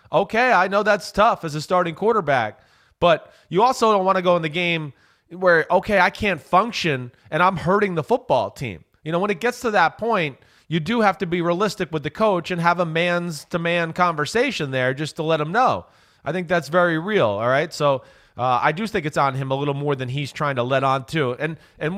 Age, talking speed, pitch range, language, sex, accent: 30-49, 240 wpm, 150-205 Hz, English, male, American